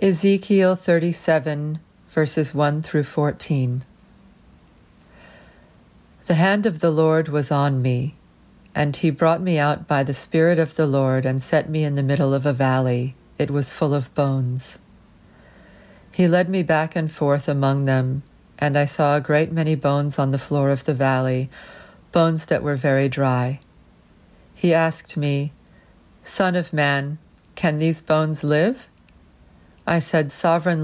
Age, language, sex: 40-59, English, female